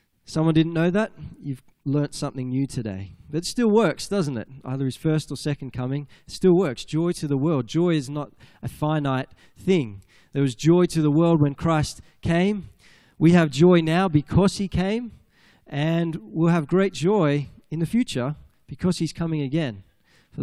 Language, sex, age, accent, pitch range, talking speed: English, male, 20-39, Australian, 135-175 Hz, 185 wpm